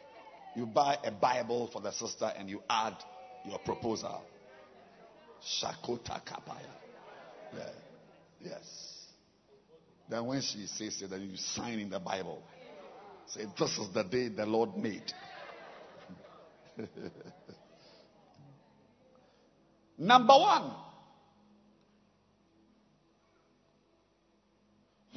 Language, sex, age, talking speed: English, male, 50-69, 85 wpm